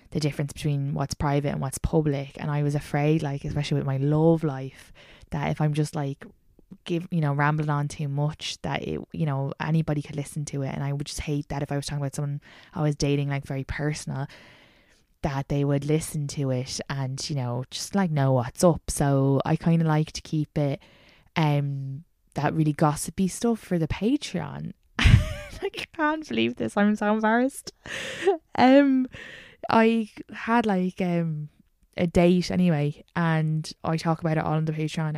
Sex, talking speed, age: female, 190 wpm, 20-39